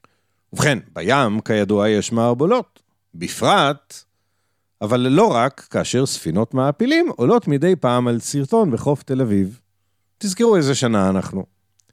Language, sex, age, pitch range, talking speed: Hebrew, male, 50-69, 95-160 Hz, 120 wpm